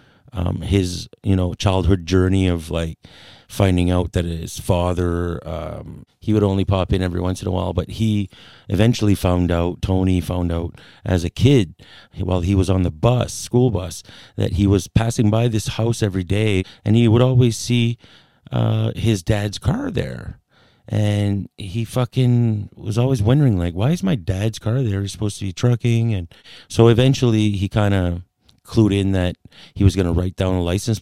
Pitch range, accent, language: 90-110 Hz, American, English